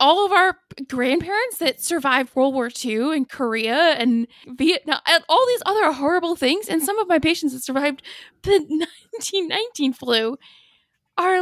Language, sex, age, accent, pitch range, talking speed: English, female, 10-29, American, 230-295 Hz, 160 wpm